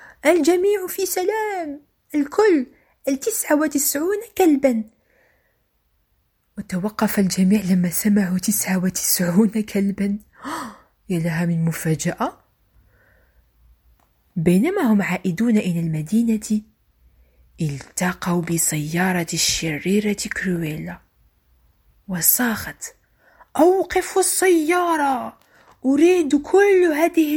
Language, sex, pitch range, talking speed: French, female, 185-305 Hz, 70 wpm